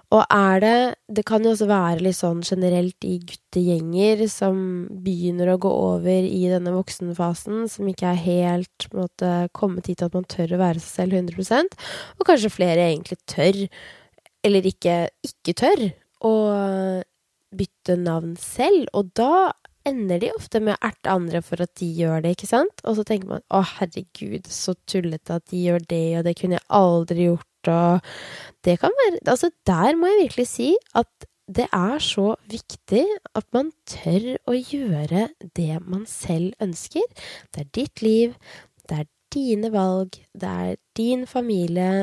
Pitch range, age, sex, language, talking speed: 175-215 Hz, 20-39, female, English, 165 wpm